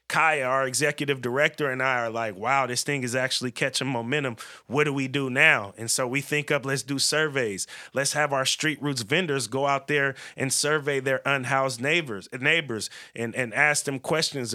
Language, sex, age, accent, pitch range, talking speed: English, male, 30-49, American, 125-145 Hz, 195 wpm